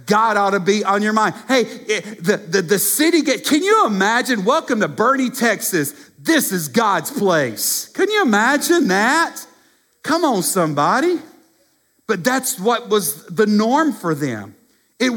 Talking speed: 160 wpm